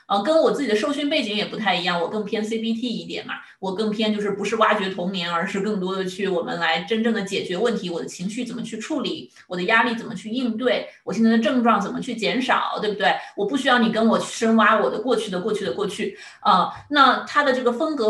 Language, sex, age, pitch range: Chinese, female, 30-49, 190-240 Hz